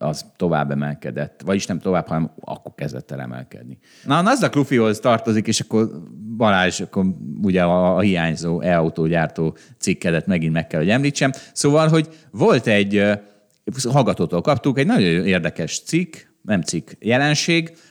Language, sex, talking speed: Hungarian, male, 145 wpm